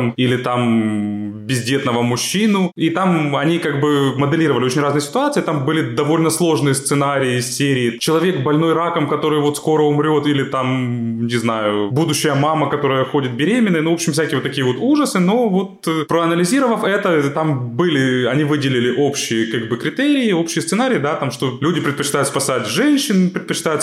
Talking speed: 165 wpm